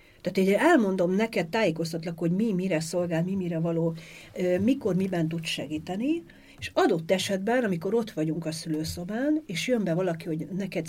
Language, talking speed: Hungarian, 165 wpm